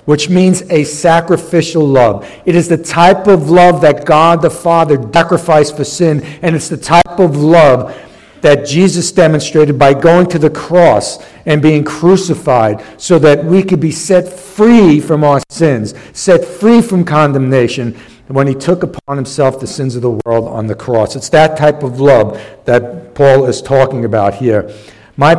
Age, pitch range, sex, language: 60-79, 135-170 Hz, male, English